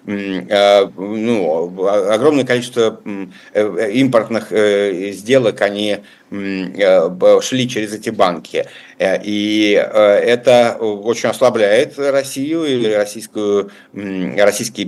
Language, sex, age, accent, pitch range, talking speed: Russian, male, 50-69, native, 100-130 Hz, 75 wpm